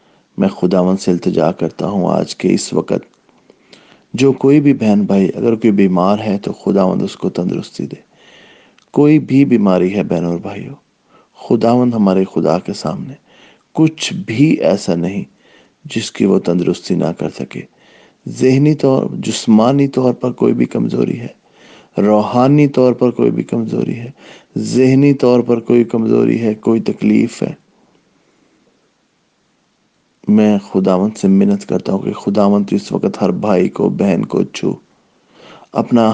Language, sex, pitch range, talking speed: English, male, 105-130 Hz, 145 wpm